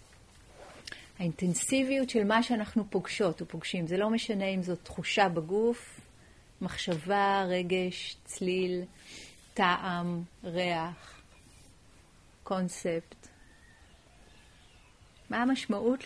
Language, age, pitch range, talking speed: Hebrew, 40-59, 170-215 Hz, 80 wpm